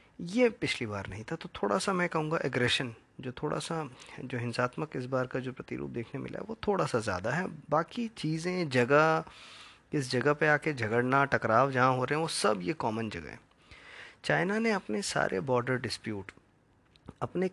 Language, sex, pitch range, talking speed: Hindi, male, 115-155 Hz, 185 wpm